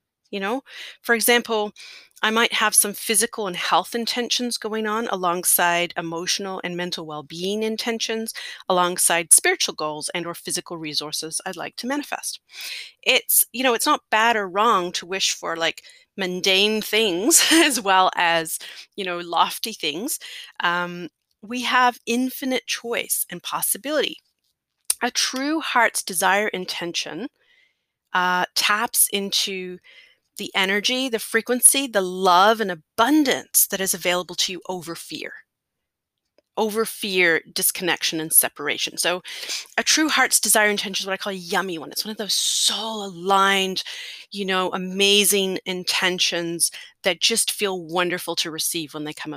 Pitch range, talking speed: 180-230 Hz, 145 wpm